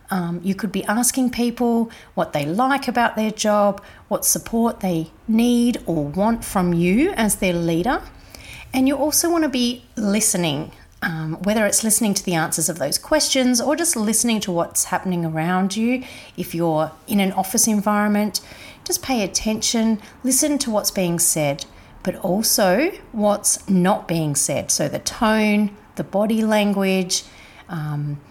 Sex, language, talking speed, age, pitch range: female, English, 160 wpm, 40-59, 170-225 Hz